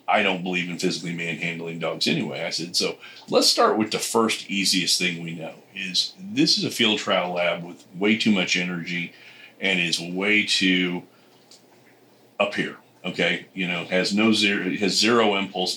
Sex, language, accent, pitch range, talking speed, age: male, English, American, 90-105 Hz, 180 wpm, 40-59